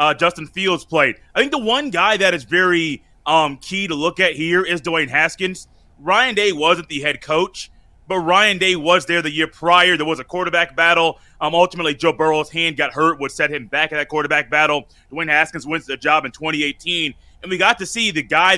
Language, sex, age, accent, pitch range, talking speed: English, male, 30-49, American, 155-190 Hz, 225 wpm